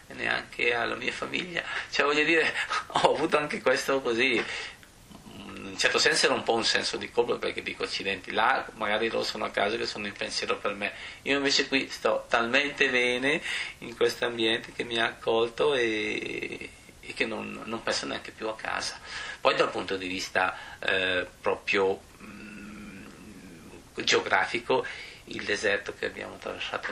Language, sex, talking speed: Italian, male, 165 wpm